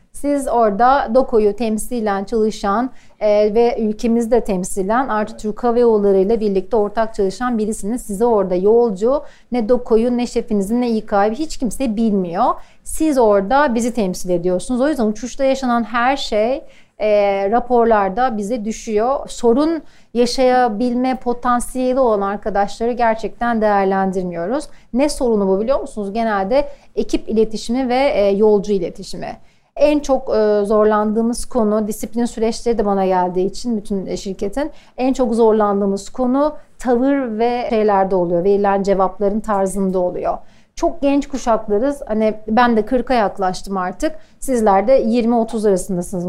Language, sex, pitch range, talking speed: Turkish, female, 205-250 Hz, 130 wpm